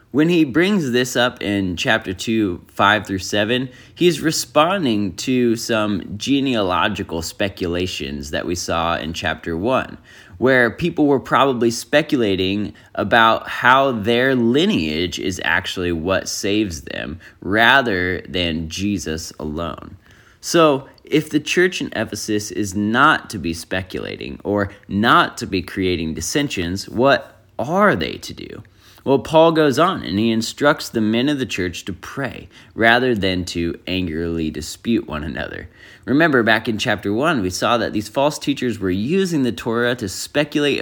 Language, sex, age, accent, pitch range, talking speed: English, male, 20-39, American, 90-130 Hz, 150 wpm